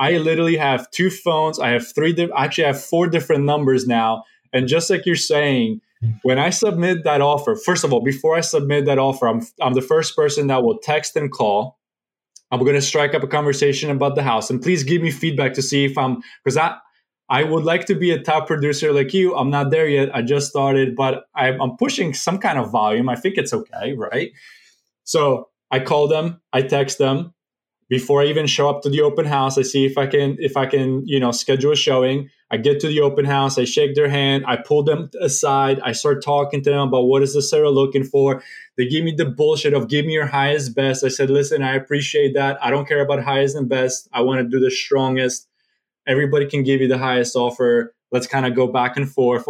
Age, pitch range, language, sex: 20-39, 130-150 Hz, English, male